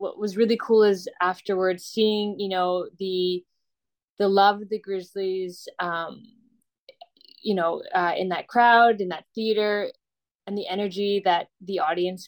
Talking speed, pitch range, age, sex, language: 150 wpm, 185-210 Hz, 20-39, female, English